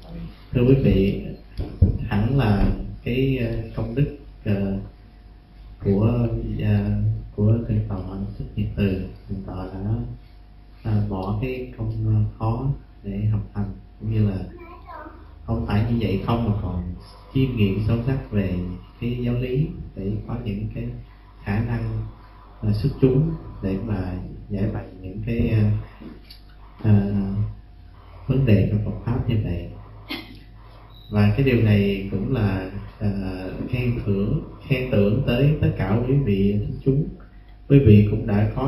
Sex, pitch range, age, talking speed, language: male, 100-115 Hz, 30-49, 140 wpm, Vietnamese